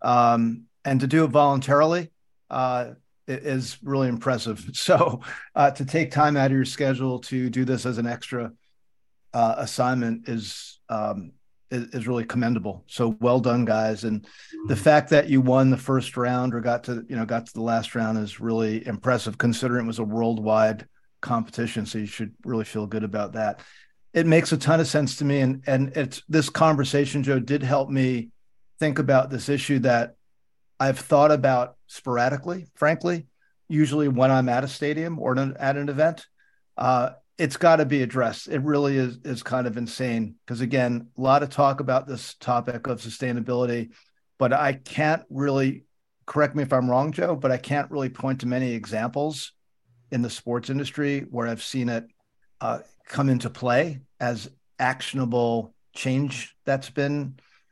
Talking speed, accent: 175 wpm, American